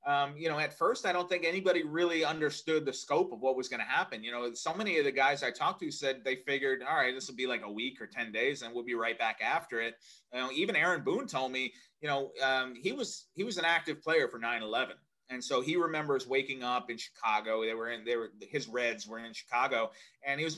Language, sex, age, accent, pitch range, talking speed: English, male, 30-49, American, 120-160 Hz, 260 wpm